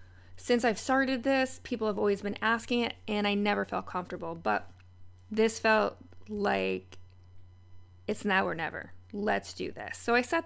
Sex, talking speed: female, 165 wpm